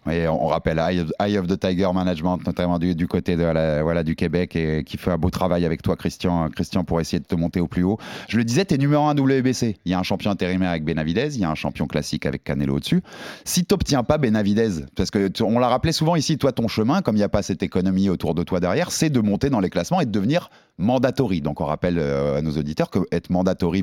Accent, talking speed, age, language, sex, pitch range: French, 250 wpm, 30-49, French, male, 90-140 Hz